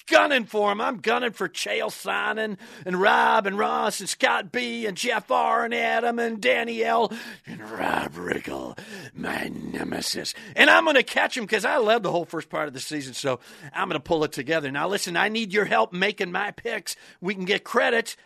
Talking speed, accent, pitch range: 205 wpm, American, 180-235 Hz